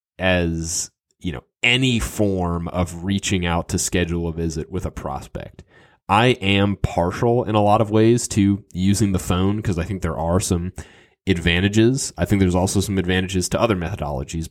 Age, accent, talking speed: 30-49, American, 180 wpm